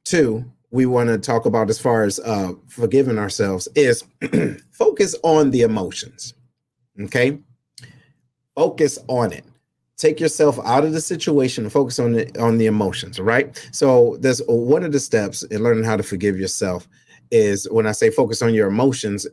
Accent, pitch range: American, 115-150 Hz